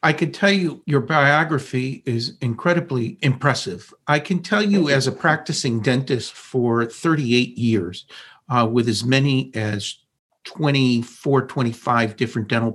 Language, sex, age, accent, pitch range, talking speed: English, male, 50-69, American, 120-145 Hz, 135 wpm